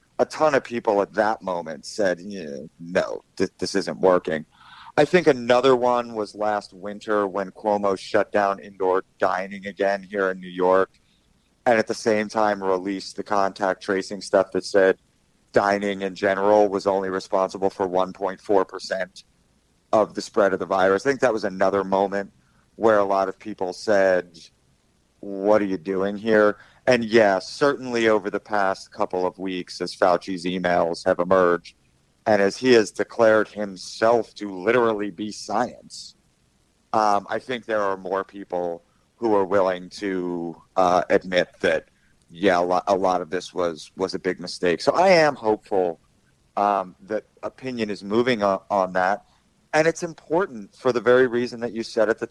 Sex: male